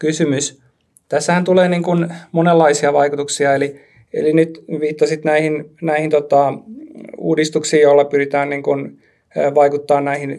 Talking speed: 120 wpm